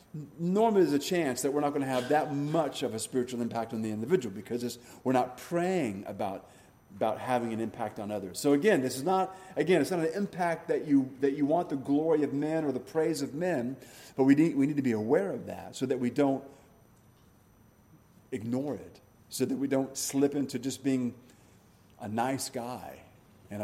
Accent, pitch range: American, 120-150 Hz